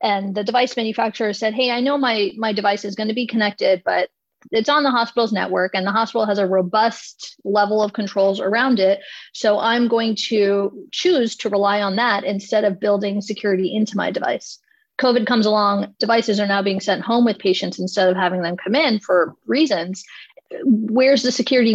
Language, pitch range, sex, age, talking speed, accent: English, 195-230 Hz, female, 30-49, 195 wpm, American